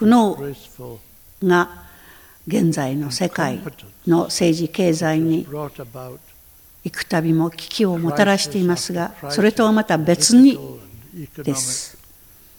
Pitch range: 145-200 Hz